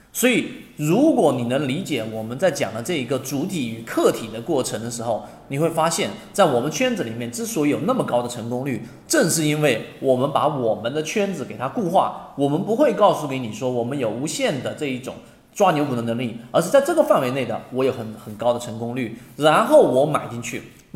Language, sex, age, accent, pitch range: Chinese, male, 30-49, native, 120-185 Hz